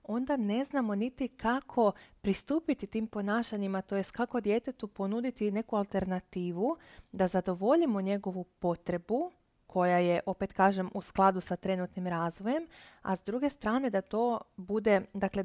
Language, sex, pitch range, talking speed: Croatian, female, 190-230 Hz, 135 wpm